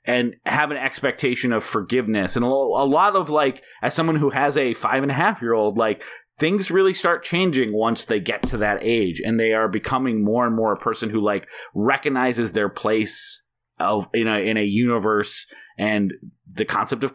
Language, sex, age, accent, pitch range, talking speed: English, male, 30-49, American, 110-150 Hz, 185 wpm